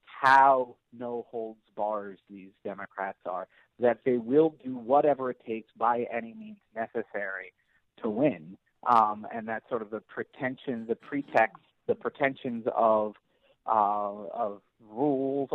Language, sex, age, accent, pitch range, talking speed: English, male, 40-59, American, 115-150 Hz, 125 wpm